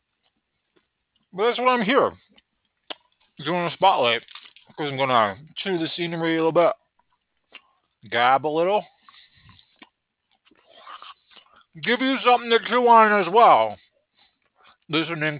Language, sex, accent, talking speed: English, male, American, 115 wpm